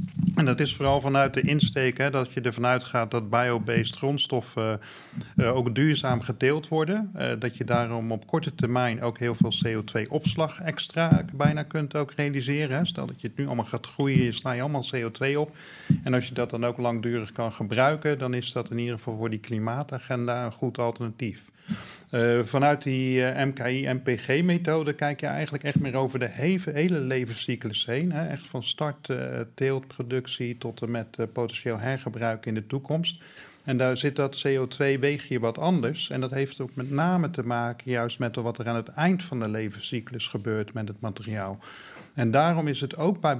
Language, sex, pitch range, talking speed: Dutch, male, 120-150 Hz, 185 wpm